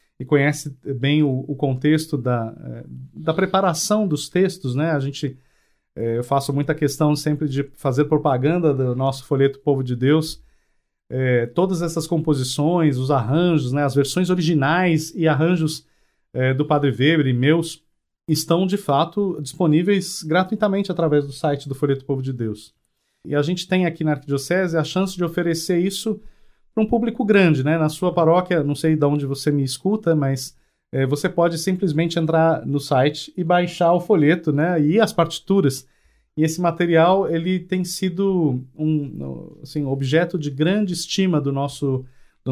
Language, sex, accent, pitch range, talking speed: Portuguese, male, Brazilian, 135-170 Hz, 165 wpm